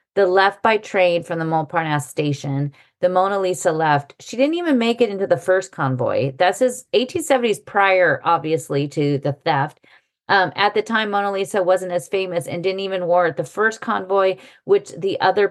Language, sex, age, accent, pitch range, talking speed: English, female, 30-49, American, 155-195 Hz, 190 wpm